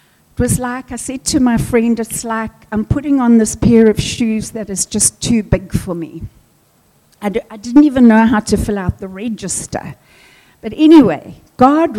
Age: 60-79